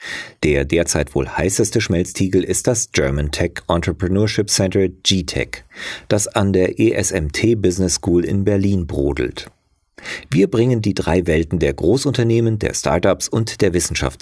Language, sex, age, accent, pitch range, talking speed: German, male, 40-59, German, 85-110 Hz, 140 wpm